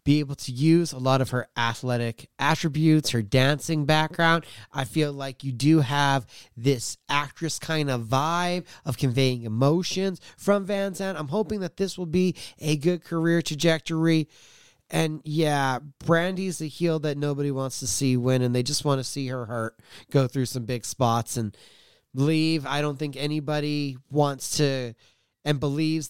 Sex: male